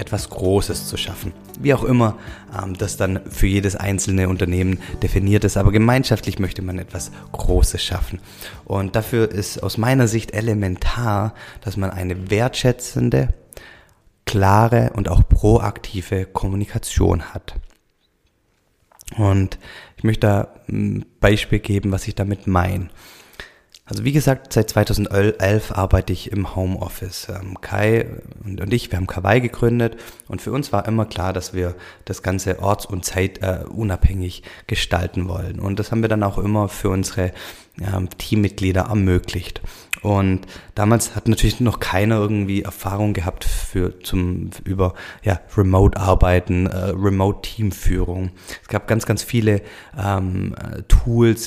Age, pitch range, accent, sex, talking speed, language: 30-49, 95-105 Hz, German, male, 135 wpm, German